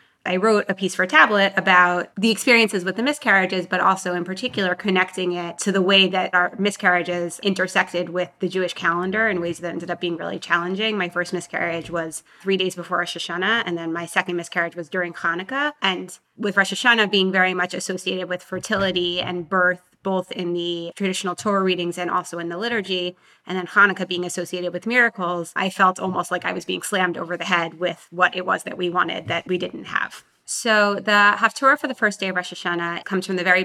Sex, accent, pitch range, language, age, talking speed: female, American, 180-205 Hz, English, 20-39, 215 wpm